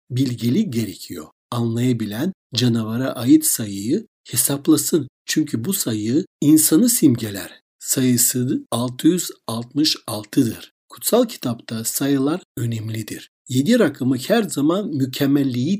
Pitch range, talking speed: 120-195 Hz, 85 wpm